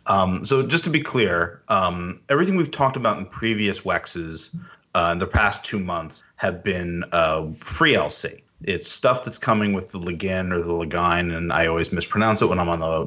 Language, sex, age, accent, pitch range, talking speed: English, male, 30-49, American, 90-120 Hz, 200 wpm